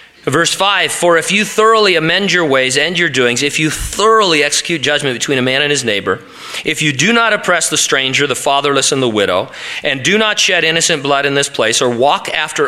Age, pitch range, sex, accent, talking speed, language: 40-59, 120-170 Hz, male, American, 220 wpm, English